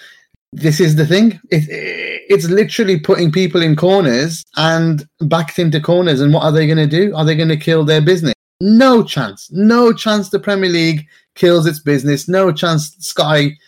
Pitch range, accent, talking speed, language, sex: 150-205 Hz, British, 180 wpm, English, male